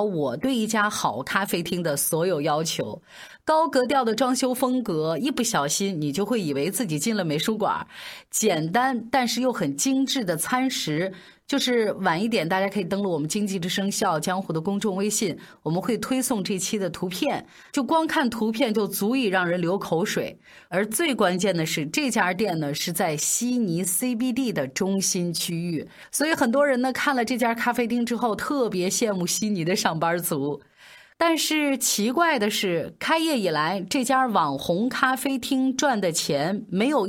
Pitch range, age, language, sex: 180-255 Hz, 30-49, Chinese, female